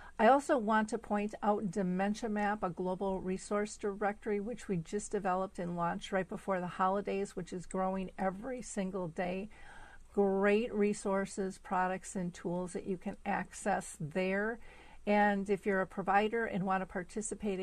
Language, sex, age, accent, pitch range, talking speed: English, female, 50-69, American, 185-210 Hz, 160 wpm